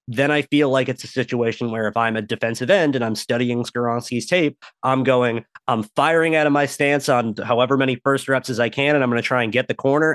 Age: 30-49